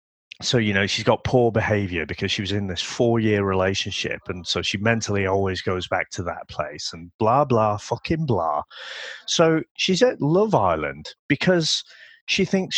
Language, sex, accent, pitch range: English, male, British, 105-175 Hz